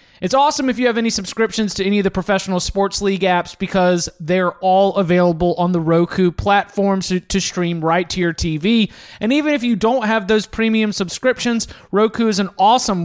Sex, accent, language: male, American, English